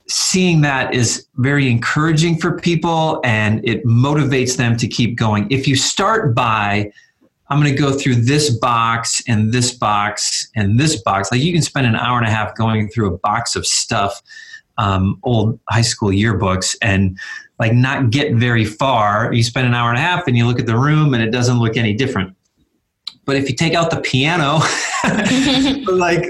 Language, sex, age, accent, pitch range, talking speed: English, male, 30-49, American, 105-140 Hz, 190 wpm